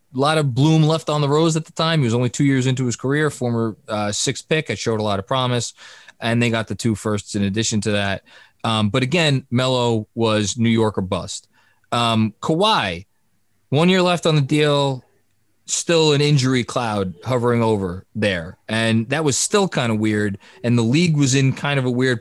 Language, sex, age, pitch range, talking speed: English, male, 20-39, 110-135 Hz, 215 wpm